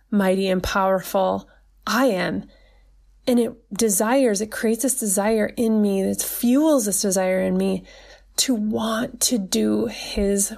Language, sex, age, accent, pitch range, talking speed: English, female, 20-39, American, 200-240 Hz, 140 wpm